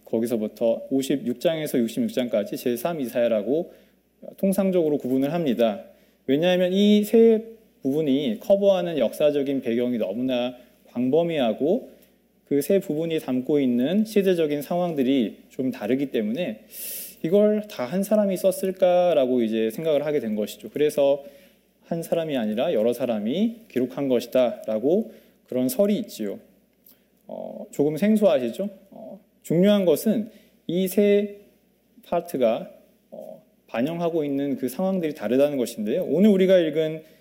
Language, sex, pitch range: Korean, male, 135-215 Hz